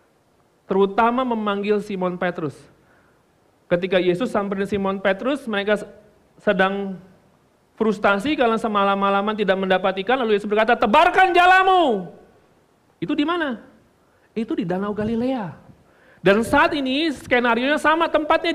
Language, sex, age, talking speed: Indonesian, male, 40-59, 120 wpm